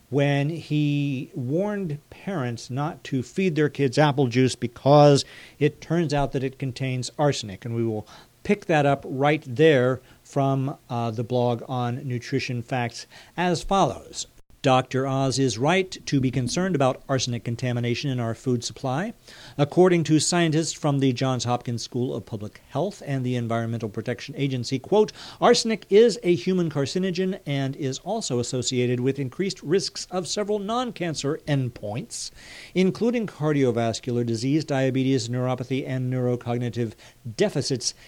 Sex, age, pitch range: male, 50-69, 125-165 Hz